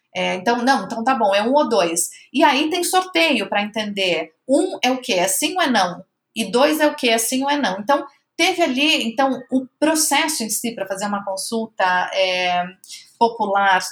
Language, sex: Portuguese, female